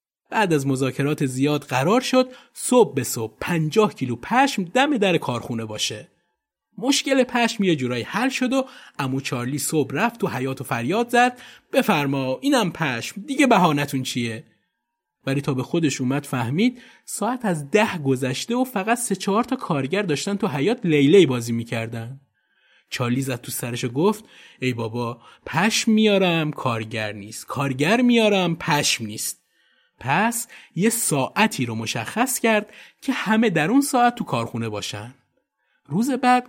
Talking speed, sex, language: 150 wpm, male, Persian